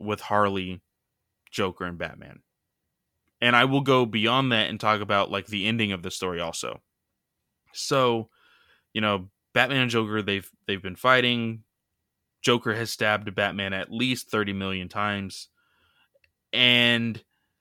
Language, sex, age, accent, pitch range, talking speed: English, male, 20-39, American, 100-125 Hz, 140 wpm